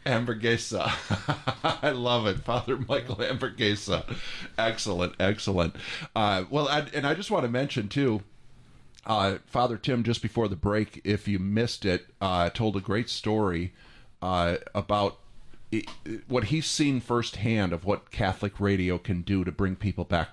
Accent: American